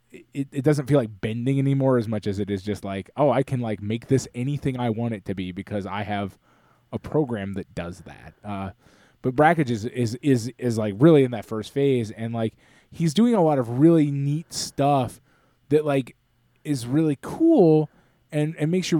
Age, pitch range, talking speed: 20-39, 100-135 Hz, 210 wpm